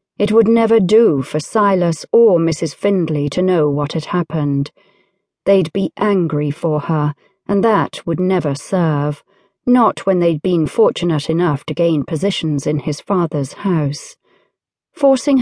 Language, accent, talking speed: English, British, 150 wpm